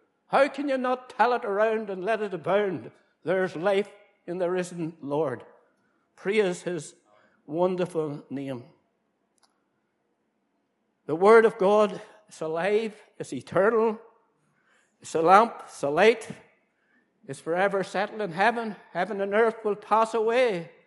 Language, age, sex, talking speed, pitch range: English, 60-79, male, 130 wpm, 170-225 Hz